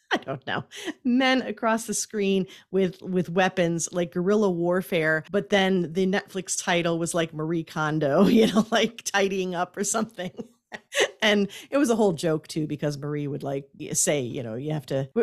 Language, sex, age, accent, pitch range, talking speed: English, female, 40-59, American, 145-200 Hz, 175 wpm